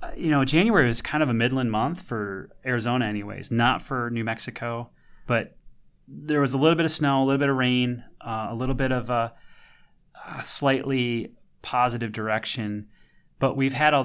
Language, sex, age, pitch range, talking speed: English, male, 30-49, 105-130 Hz, 185 wpm